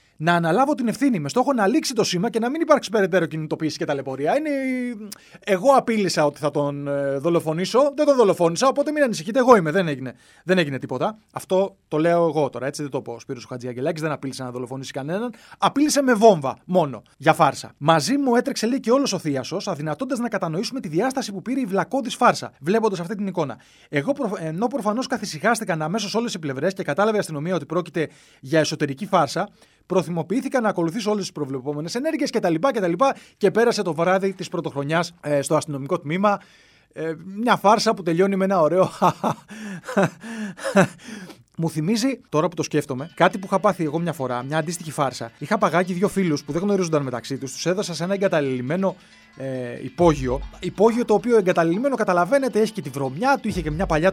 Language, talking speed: Greek, 190 wpm